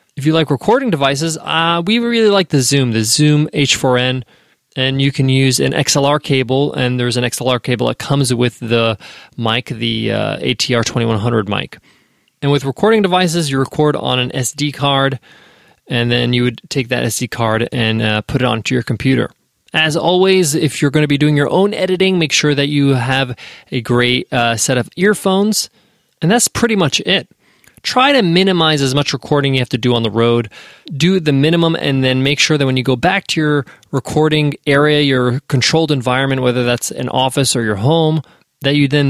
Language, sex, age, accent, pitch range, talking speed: English, male, 20-39, American, 125-170 Hz, 200 wpm